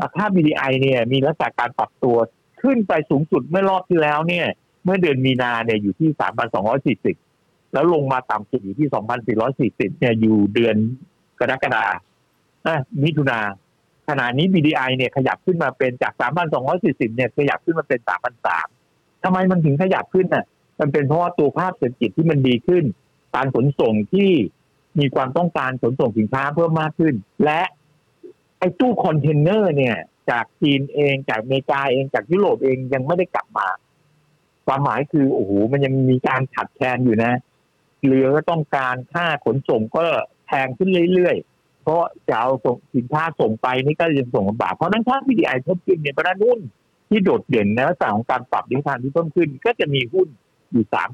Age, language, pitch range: 60-79, Thai, 125-170 Hz